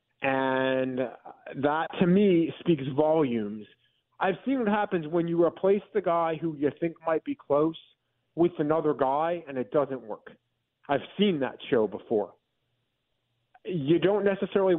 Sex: male